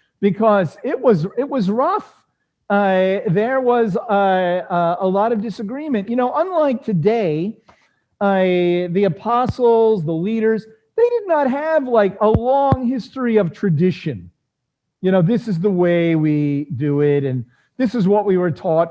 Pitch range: 165-220 Hz